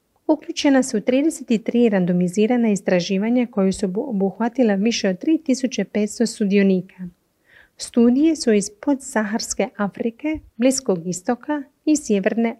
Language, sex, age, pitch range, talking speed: Croatian, female, 30-49, 195-245 Hz, 105 wpm